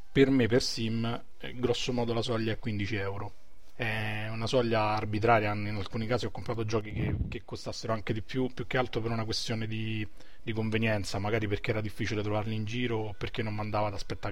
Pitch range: 100-115 Hz